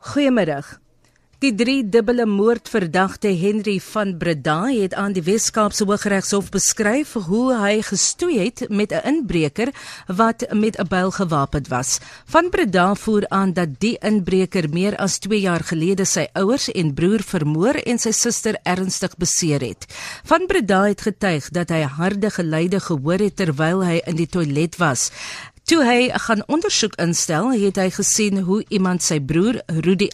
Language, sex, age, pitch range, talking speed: English, female, 40-59, 180-230 Hz, 155 wpm